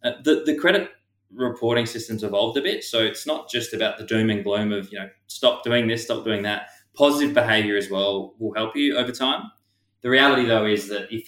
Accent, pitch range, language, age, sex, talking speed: Australian, 100-115 Hz, English, 20-39, male, 225 wpm